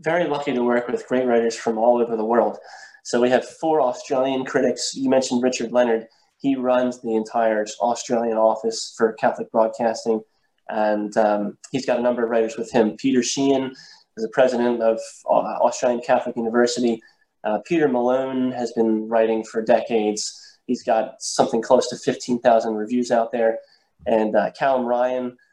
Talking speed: 170 wpm